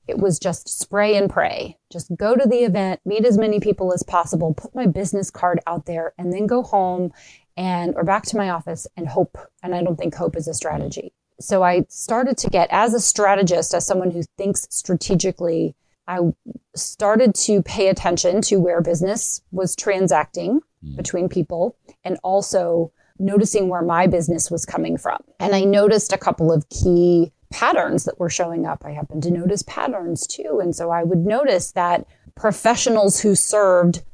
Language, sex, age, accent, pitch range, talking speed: English, female, 30-49, American, 170-200 Hz, 185 wpm